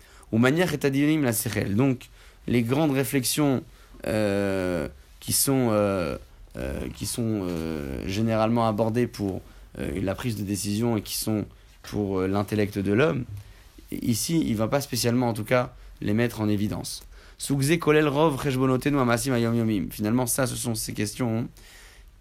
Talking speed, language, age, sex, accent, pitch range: 140 wpm, French, 30-49, male, French, 105-125 Hz